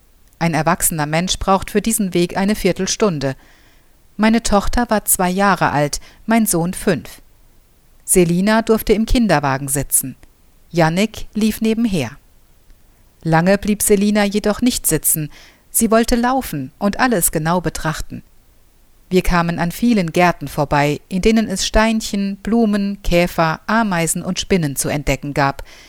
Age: 50-69